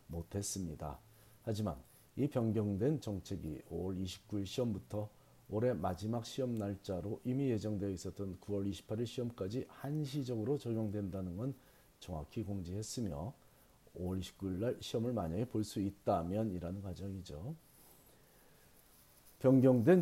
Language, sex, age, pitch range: Korean, male, 40-59, 95-120 Hz